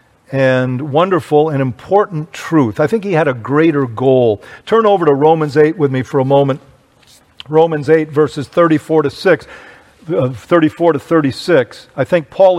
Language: English